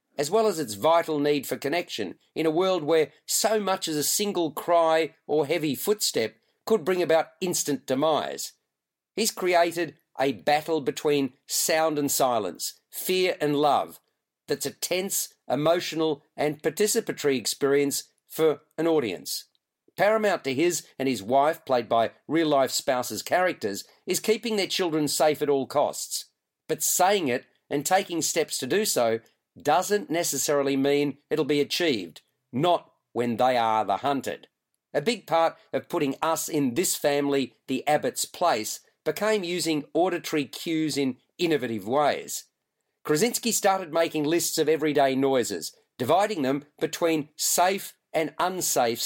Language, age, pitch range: English, 40-59, 140-175 Hz